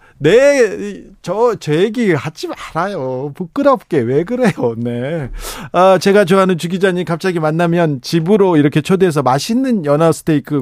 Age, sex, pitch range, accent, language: 40-59, male, 130-190 Hz, native, Korean